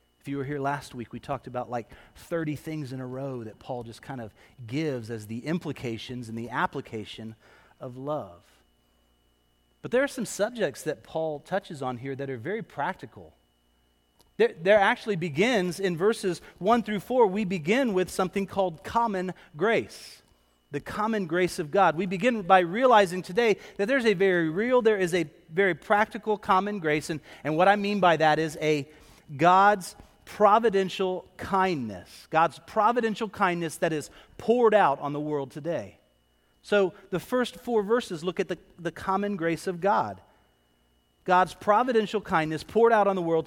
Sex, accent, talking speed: male, American, 175 wpm